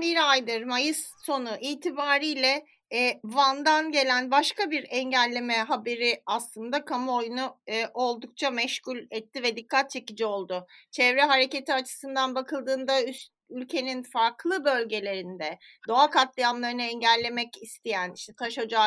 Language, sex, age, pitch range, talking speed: Turkish, female, 30-49, 220-280 Hz, 120 wpm